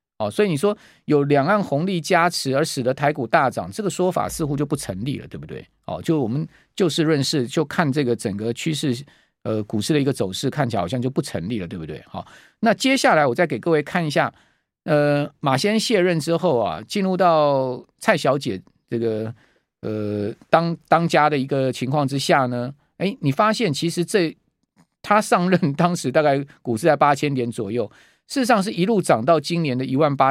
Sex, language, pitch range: male, Chinese, 130-180 Hz